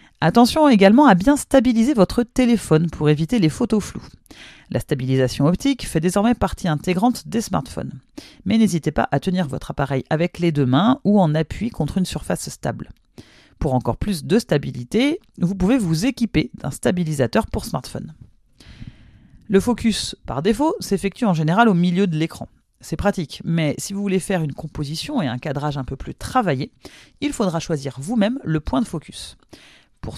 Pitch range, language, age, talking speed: 155-230 Hz, French, 40-59, 175 wpm